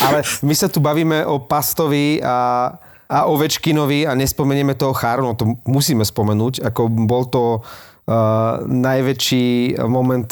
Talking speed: 140 wpm